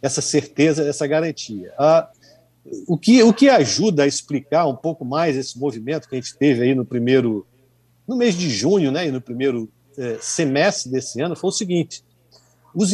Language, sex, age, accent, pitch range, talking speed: Portuguese, male, 50-69, Brazilian, 130-170 Hz, 185 wpm